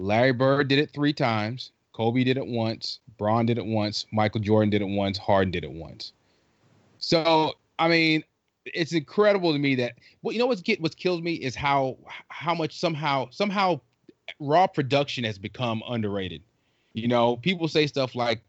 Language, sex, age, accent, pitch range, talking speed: English, male, 30-49, American, 105-135 Hz, 180 wpm